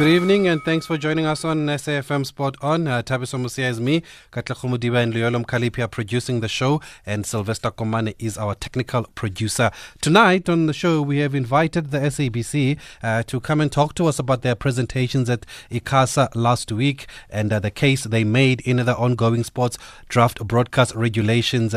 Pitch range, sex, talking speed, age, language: 110-130 Hz, male, 180 wpm, 30-49, English